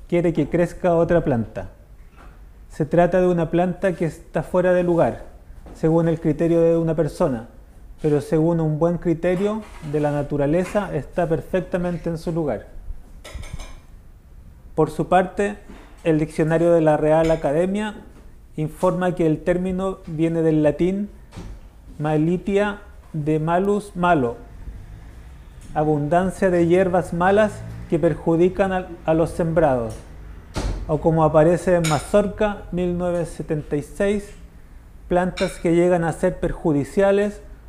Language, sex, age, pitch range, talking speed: Spanish, male, 30-49, 140-180 Hz, 120 wpm